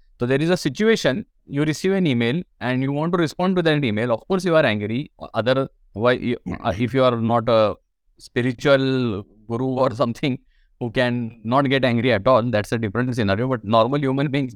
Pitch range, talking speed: 115-160 Hz, 195 wpm